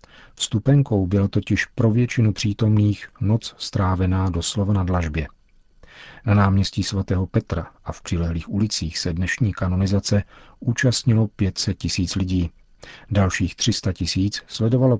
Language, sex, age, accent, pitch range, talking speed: Czech, male, 40-59, native, 95-110 Hz, 115 wpm